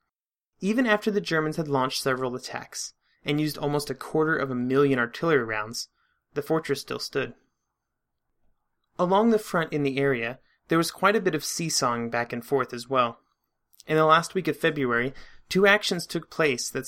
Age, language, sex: 30-49, English, male